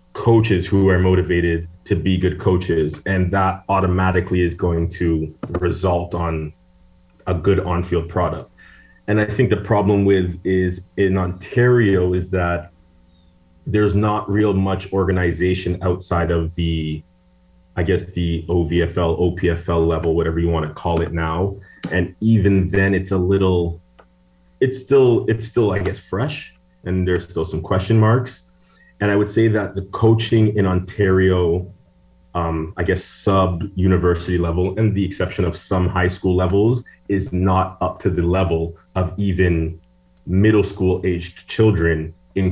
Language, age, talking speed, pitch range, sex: English, 30-49, 150 wpm, 85-95 Hz, male